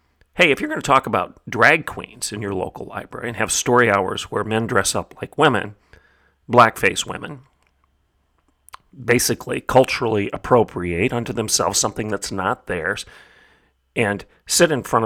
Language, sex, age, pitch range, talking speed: English, male, 40-59, 100-130 Hz, 150 wpm